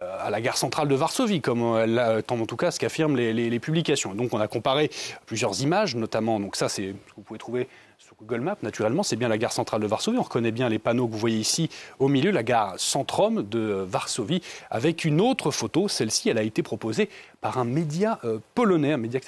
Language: French